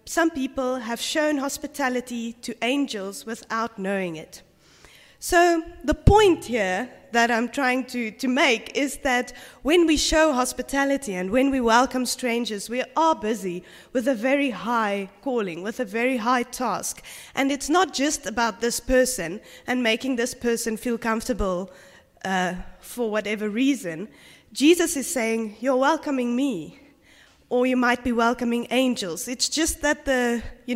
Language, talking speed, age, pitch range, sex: English, 150 wpm, 20-39, 220-270 Hz, female